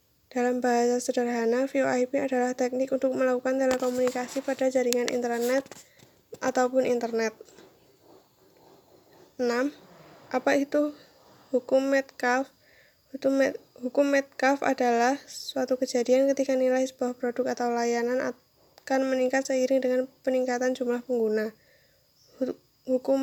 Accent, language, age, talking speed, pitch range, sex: native, Indonesian, 10-29, 100 wpm, 240-260 Hz, female